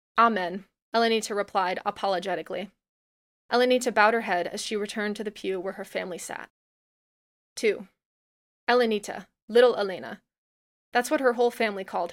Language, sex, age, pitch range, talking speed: English, female, 20-39, 200-240 Hz, 140 wpm